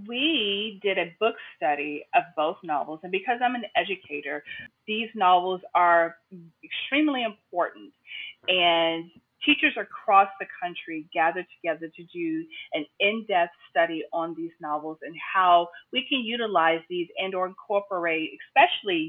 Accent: American